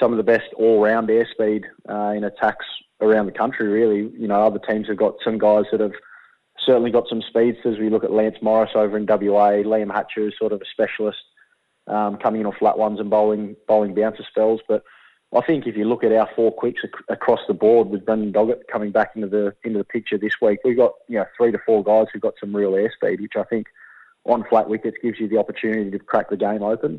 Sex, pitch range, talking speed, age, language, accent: male, 105-115 Hz, 240 wpm, 20-39, English, Australian